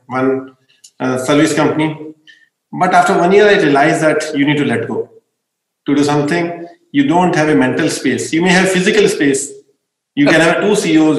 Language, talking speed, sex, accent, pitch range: Hindi, 190 wpm, male, native, 135-160 Hz